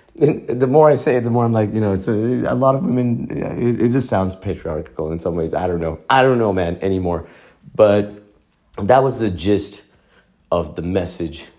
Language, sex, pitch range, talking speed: English, male, 95-120 Hz, 205 wpm